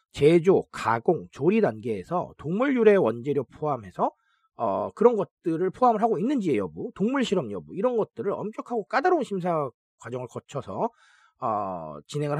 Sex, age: male, 40-59